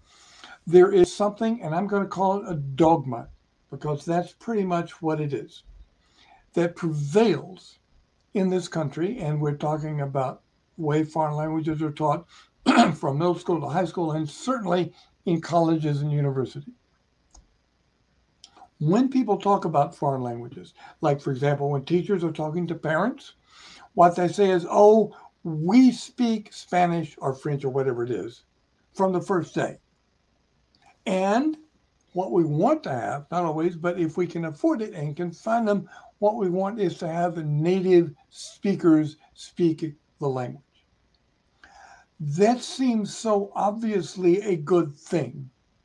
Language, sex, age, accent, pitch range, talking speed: English, male, 60-79, American, 155-200 Hz, 150 wpm